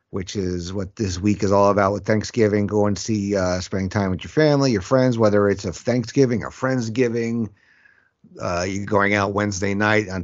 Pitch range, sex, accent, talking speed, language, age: 95-120 Hz, male, American, 200 wpm, English, 50-69